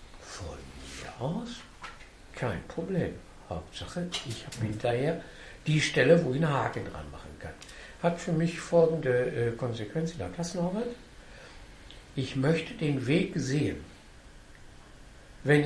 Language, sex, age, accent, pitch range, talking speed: German, male, 60-79, German, 95-160 Hz, 125 wpm